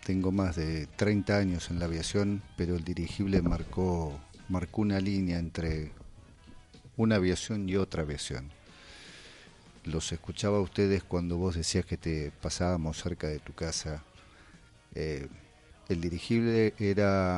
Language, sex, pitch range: Spanish, male, 85-100 Hz